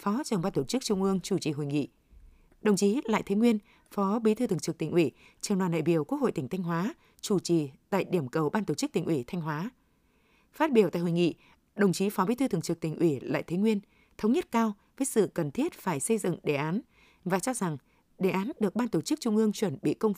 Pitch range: 165-220 Hz